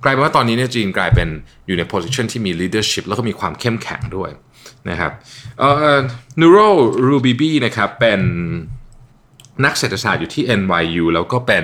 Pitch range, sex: 100-135 Hz, male